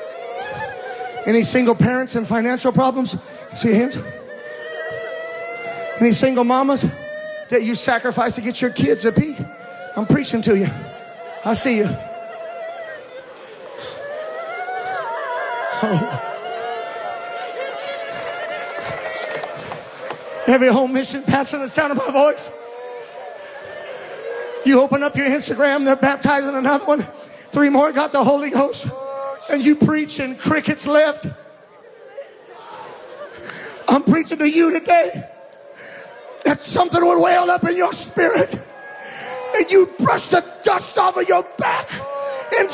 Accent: American